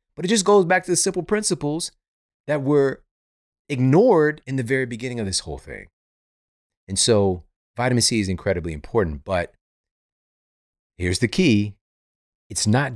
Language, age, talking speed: English, 30-49, 155 wpm